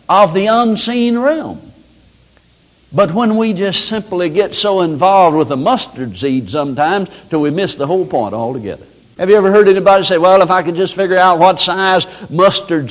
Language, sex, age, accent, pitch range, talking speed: English, male, 60-79, American, 145-190 Hz, 185 wpm